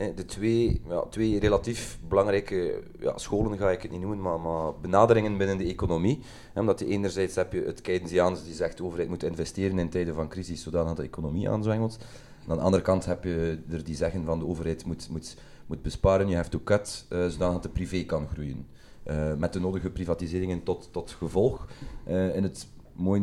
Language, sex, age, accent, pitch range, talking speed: Dutch, male, 30-49, Belgian, 85-105 Hz, 205 wpm